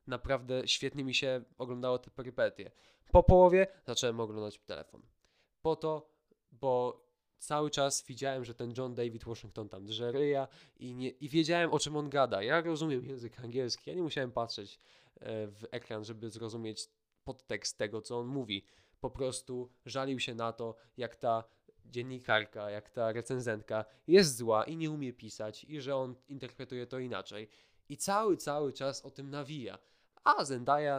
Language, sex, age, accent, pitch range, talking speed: Polish, male, 20-39, native, 115-145 Hz, 160 wpm